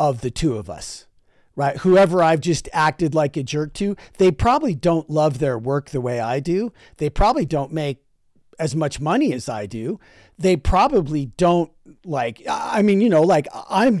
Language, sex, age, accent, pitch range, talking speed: English, male, 40-59, American, 140-185 Hz, 190 wpm